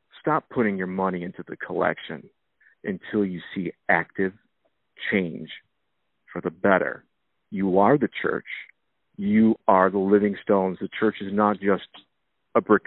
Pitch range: 95-110 Hz